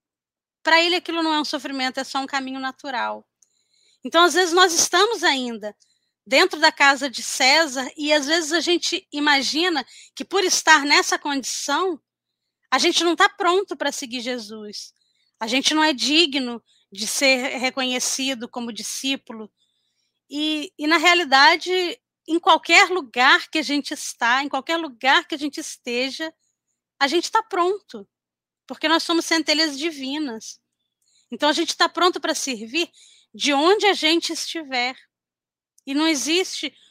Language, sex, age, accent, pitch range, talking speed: Portuguese, female, 20-39, Brazilian, 255-330 Hz, 155 wpm